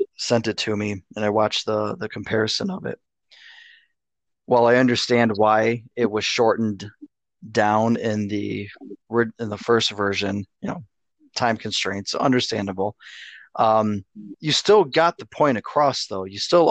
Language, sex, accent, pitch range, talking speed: English, male, American, 105-130 Hz, 145 wpm